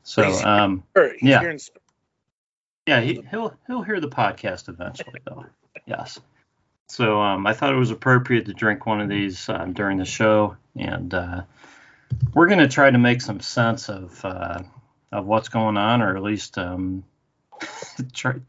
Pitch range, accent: 95-120 Hz, American